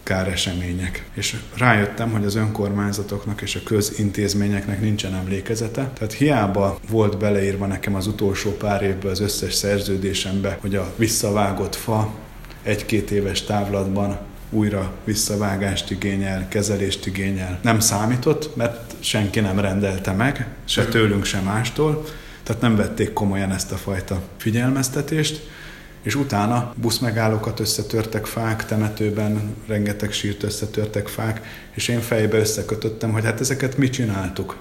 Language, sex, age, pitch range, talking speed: Hungarian, male, 30-49, 100-115 Hz, 125 wpm